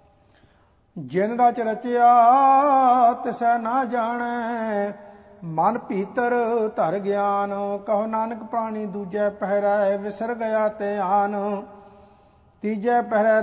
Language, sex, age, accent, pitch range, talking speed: English, male, 50-69, Indian, 200-215 Hz, 85 wpm